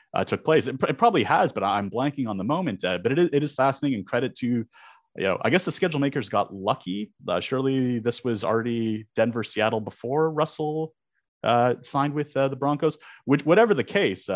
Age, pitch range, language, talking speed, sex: 30-49, 95-130 Hz, English, 215 wpm, male